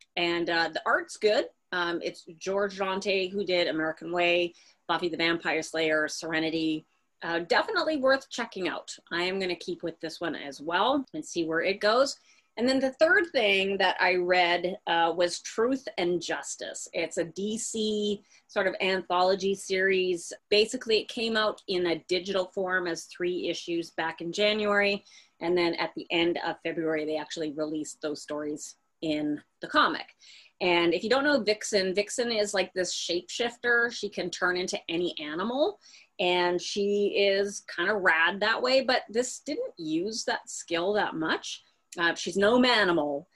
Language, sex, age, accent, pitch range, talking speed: English, female, 30-49, American, 170-210 Hz, 170 wpm